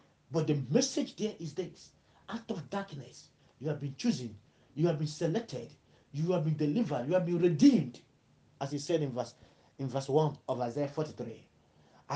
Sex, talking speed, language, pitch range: male, 180 wpm, English, 140-175 Hz